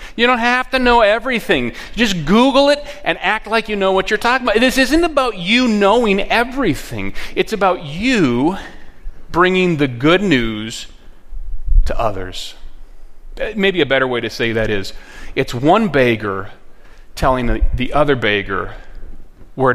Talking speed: 150 wpm